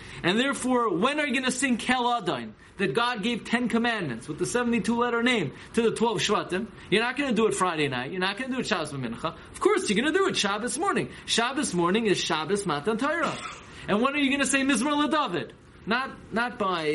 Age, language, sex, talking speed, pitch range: 30-49, English, male, 235 wpm, 155-225 Hz